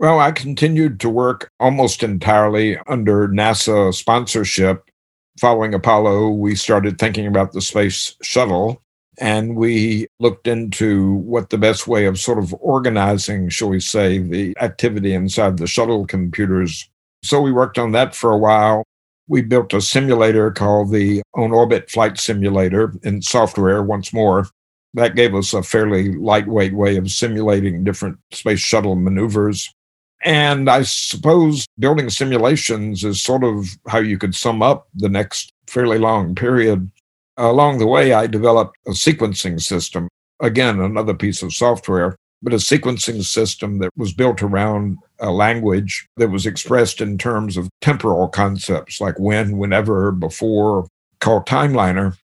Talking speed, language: 150 wpm, English